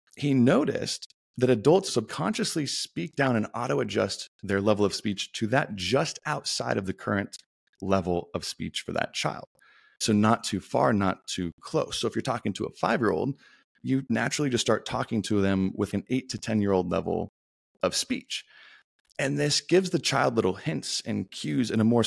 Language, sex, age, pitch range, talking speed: English, male, 30-49, 100-130 Hz, 180 wpm